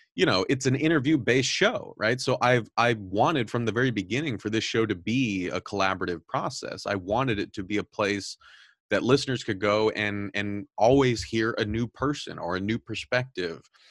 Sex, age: male, 30-49